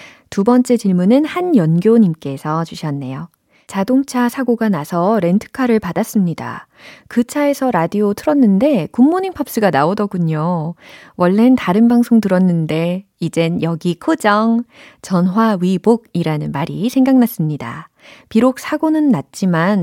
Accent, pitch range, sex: native, 170-240 Hz, female